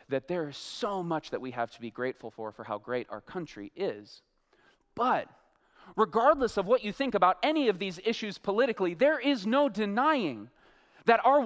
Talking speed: 190 wpm